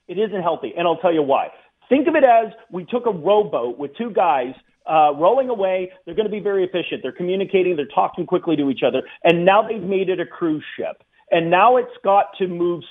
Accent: American